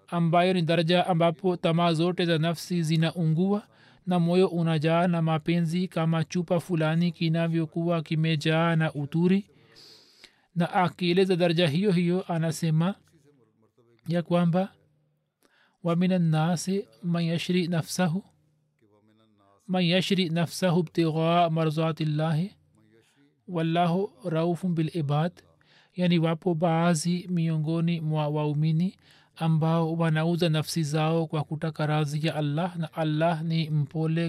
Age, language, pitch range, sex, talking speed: 40-59, Swahili, 150-175 Hz, male, 115 wpm